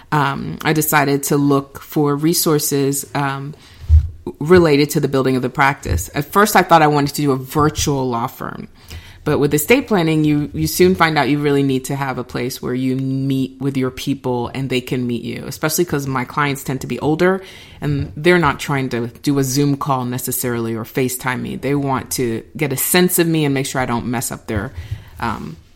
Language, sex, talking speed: English, female, 215 wpm